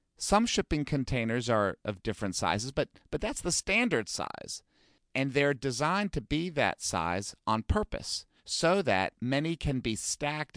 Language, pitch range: English, 105-150 Hz